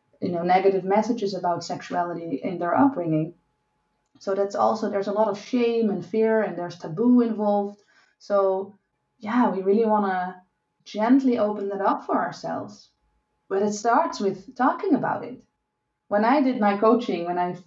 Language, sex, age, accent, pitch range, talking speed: French, female, 30-49, Dutch, 195-255 Hz, 165 wpm